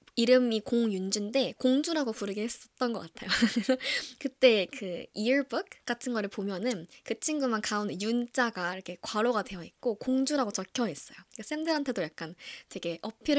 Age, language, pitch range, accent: 20-39, Korean, 195-260 Hz, native